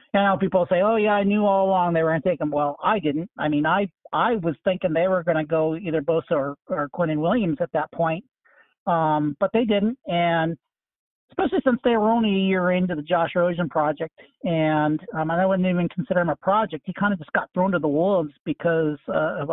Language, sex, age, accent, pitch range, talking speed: English, male, 50-69, American, 165-200 Hz, 230 wpm